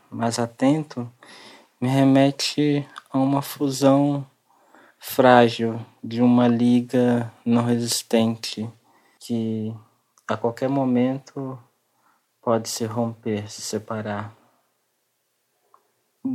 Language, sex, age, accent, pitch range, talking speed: Portuguese, male, 20-39, Brazilian, 110-120 Hz, 85 wpm